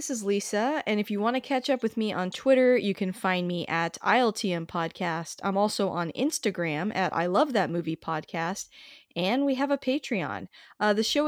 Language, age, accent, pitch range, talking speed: English, 20-39, American, 175-245 Hz, 210 wpm